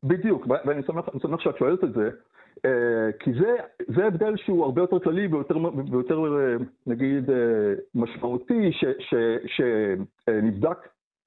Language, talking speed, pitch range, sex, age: Hebrew, 110 wpm, 135-195 Hz, male, 50-69